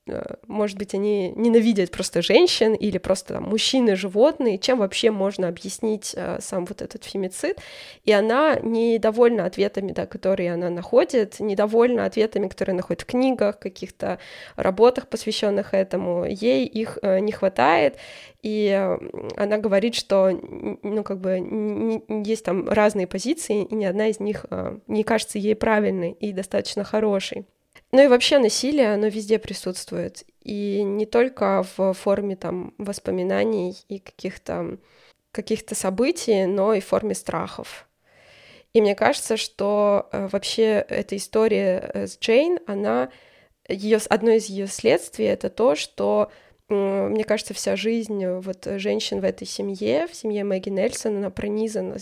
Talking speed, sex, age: 135 wpm, female, 20-39